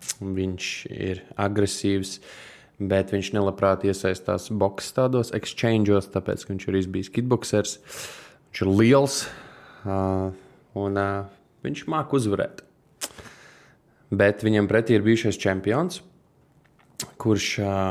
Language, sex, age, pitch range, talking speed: English, male, 20-39, 95-115 Hz, 95 wpm